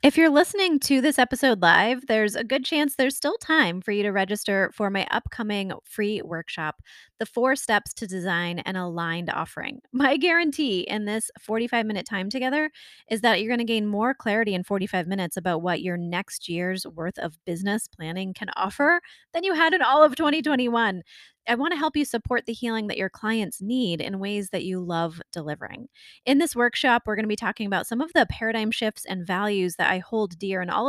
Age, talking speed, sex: 20-39, 205 wpm, female